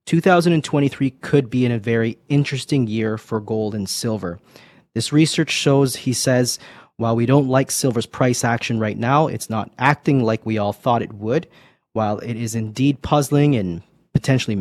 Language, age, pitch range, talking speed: English, 30-49, 110-130 Hz, 175 wpm